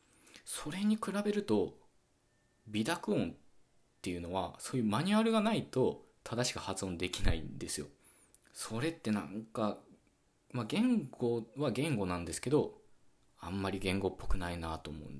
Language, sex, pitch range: Japanese, male, 85-135 Hz